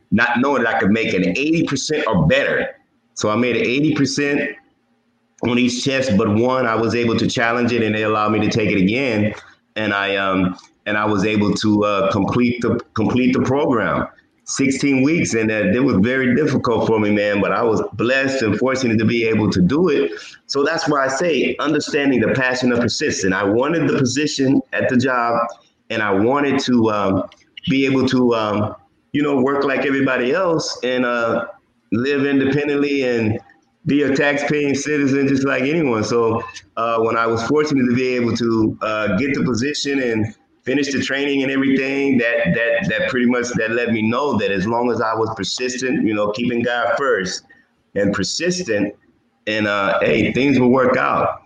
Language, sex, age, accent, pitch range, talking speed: English, male, 30-49, American, 110-135 Hz, 190 wpm